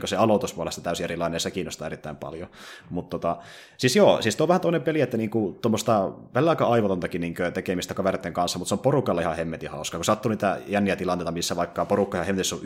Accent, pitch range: native, 90-110 Hz